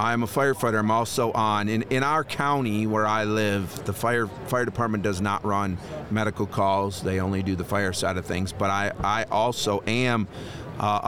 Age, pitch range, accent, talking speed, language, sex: 40-59, 100-120 Hz, American, 195 wpm, English, male